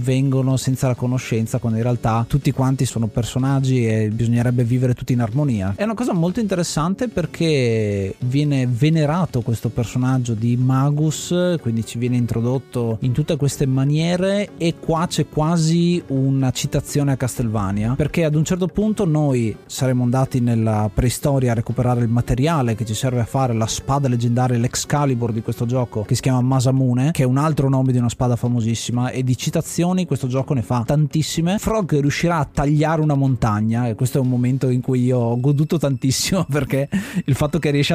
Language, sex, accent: Italian, male, native